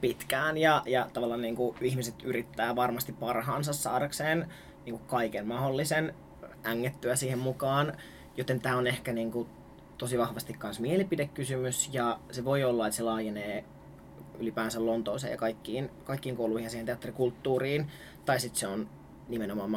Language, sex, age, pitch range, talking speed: Finnish, male, 30-49, 115-130 Hz, 140 wpm